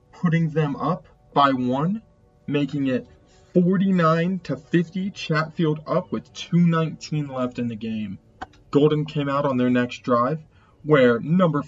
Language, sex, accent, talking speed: English, male, American, 140 wpm